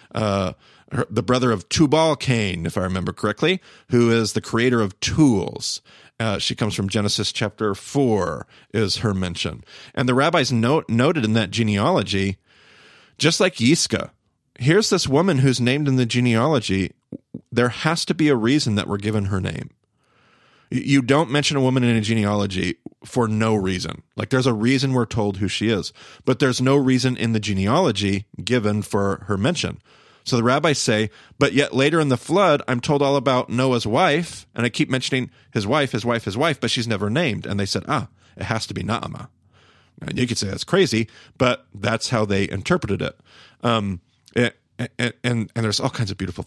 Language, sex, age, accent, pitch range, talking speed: English, male, 40-59, American, 105-130 Hz, 190 wpm